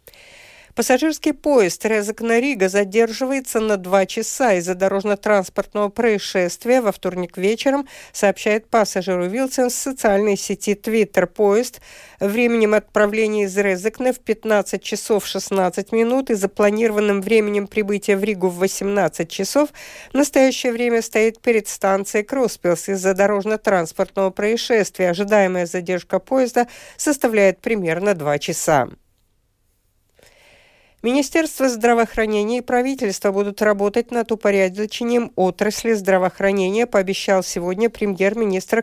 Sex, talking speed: female, 110 wpm